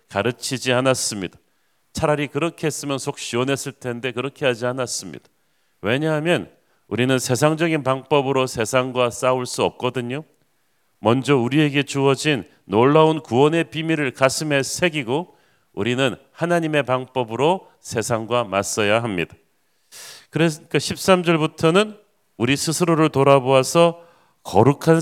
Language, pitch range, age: Korean, 125-155 Hz, 40-59